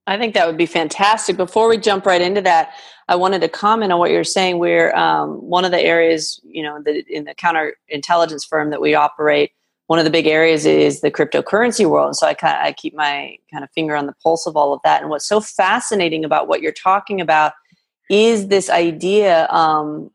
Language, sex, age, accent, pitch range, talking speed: English, female, 30-49, American, 155-200 Hz, 225 wpm